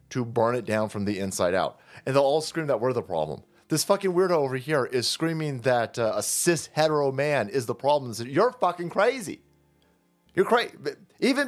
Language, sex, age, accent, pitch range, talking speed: English, male, 30-49, American, 140-215 Hz, 200 wpm